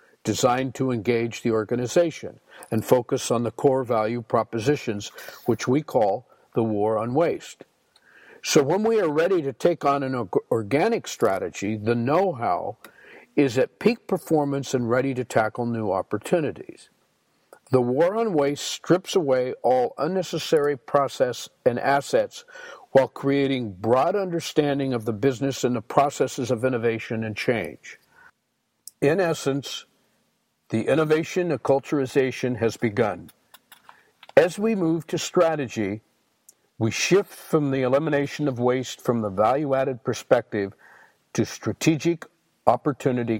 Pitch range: 115-155 Hz